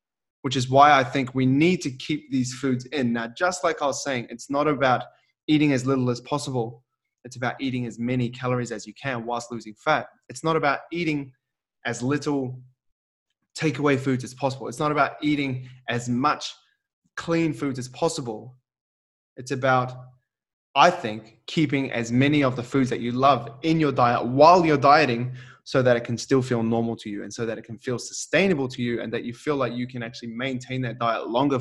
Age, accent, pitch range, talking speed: 20-39, Australian, 120-140 Hz, 205 wpm